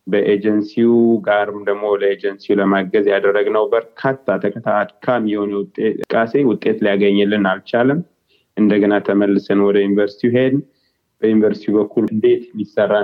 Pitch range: 100-115 Hz